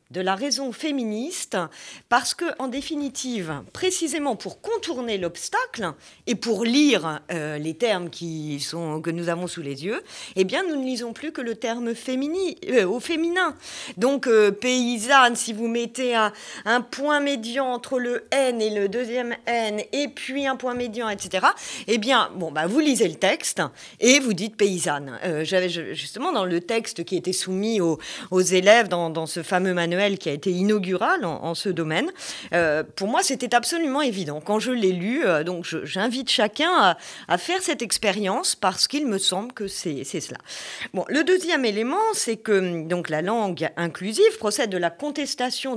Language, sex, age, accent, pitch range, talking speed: French, female, 40-59, French, 175-255 Hz, 185 wpm